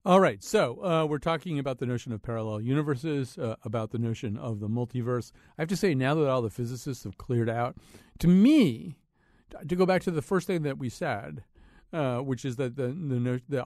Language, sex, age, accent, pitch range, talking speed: English, male, 50-69, American, 115-160 Hz, 210 wpm